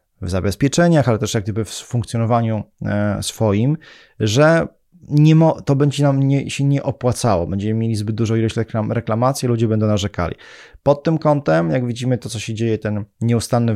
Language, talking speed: Polish, 155 wpm